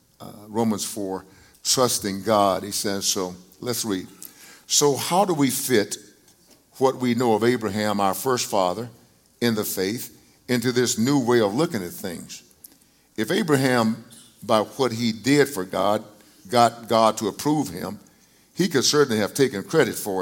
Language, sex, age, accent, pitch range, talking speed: English, male, 50-69, American, 105-145 Hz, 160 wpm